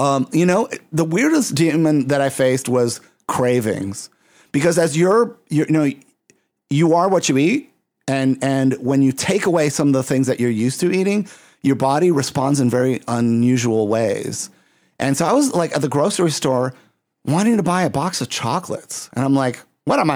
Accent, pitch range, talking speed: American, 125-155 Hz, 195 wpm